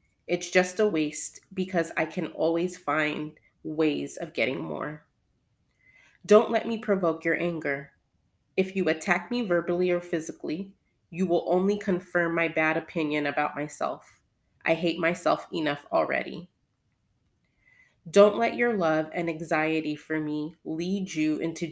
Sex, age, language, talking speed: female, 30-49, English, 140 wpm